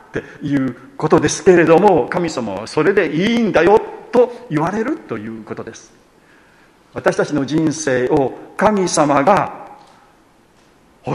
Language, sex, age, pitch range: Japanese, male, 50-69, 125-175 Hz